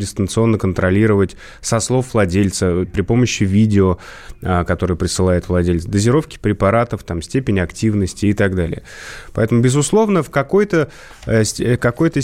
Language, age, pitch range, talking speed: Russian, 20-39, 95-120 Hz, 120 wpm